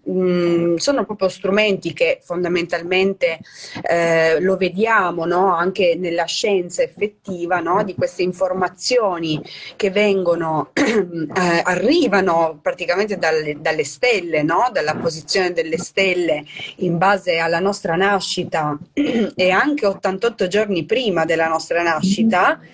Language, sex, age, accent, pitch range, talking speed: Italian, female, 30-49, native, 175-205 Hz, 115 wpm